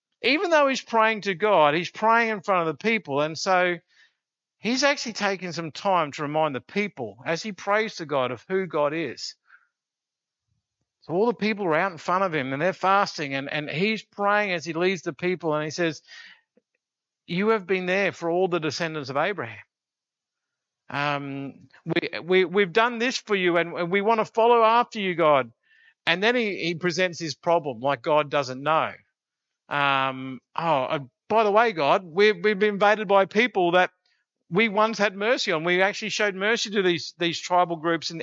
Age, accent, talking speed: 50-69, Australian, 190 wpm